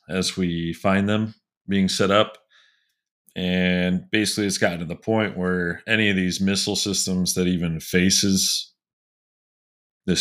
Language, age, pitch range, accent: English, 30-49, 85-105 Hz, American